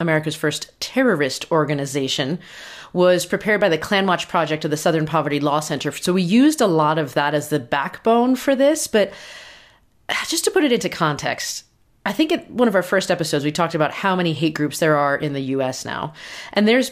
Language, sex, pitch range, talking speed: English, female, 155-235 Hz, 210 wpm